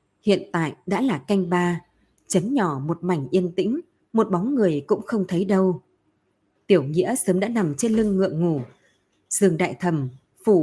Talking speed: 180 wpm